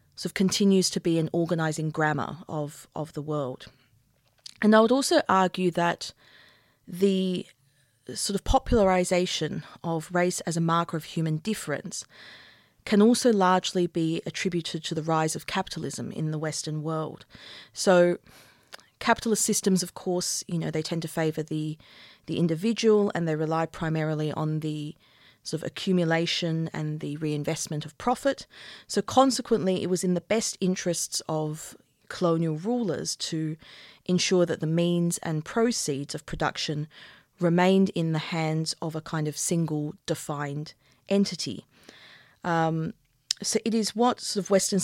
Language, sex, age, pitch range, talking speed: English, female, 30-49, 155-190 Hz, 145 wpm